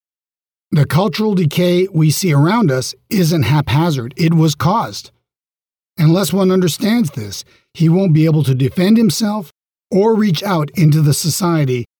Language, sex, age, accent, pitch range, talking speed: English, male, 50-69, American, 135-175 Hz, 145 wpm